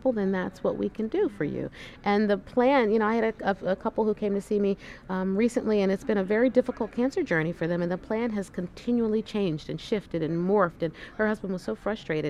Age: 40-59